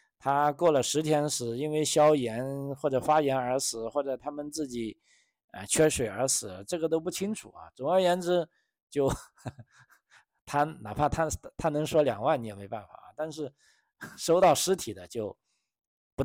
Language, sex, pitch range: Chinese, male, 105-145 Hz